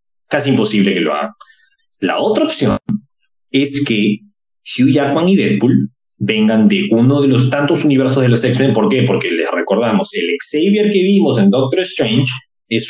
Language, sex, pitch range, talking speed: Spanish, male, 120-205 Hz, 170 wpm